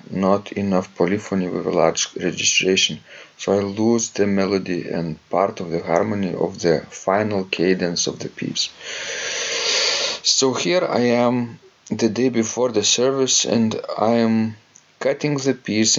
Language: English